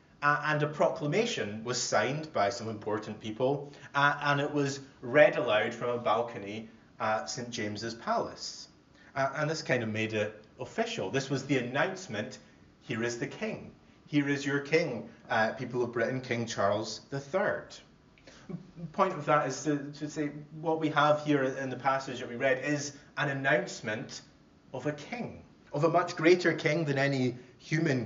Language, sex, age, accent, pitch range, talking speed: English, male, 30-49, British, 115-145 Hz, 175 wpm